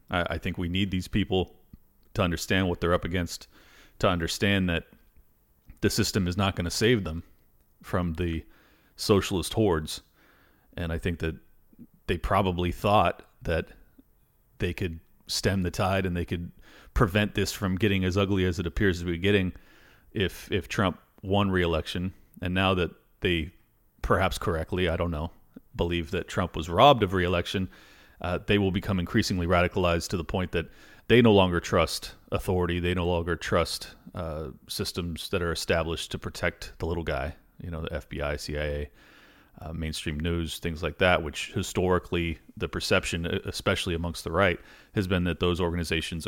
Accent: American